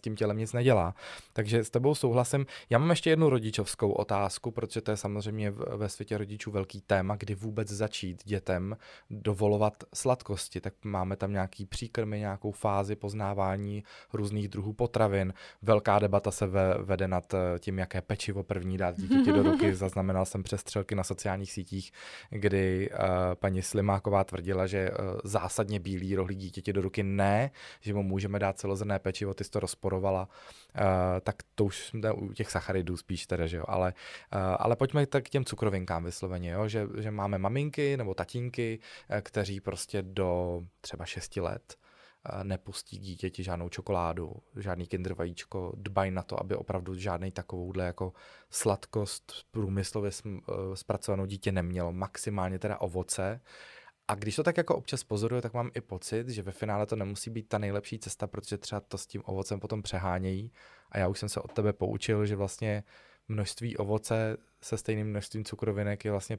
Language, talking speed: Czech, 165 wpm